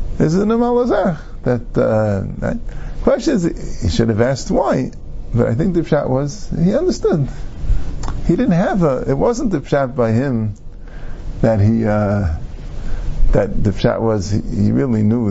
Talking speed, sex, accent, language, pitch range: 160 wpm, male, American, English, 100-145 Hz